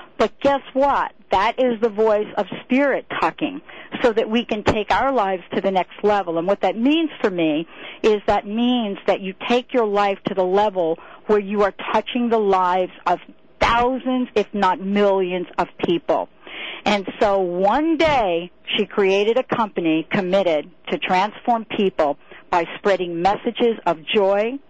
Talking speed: 165 wpm